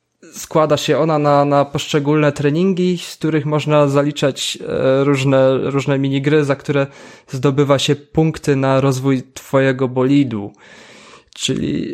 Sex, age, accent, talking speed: male, 20-39, native, 120 wpm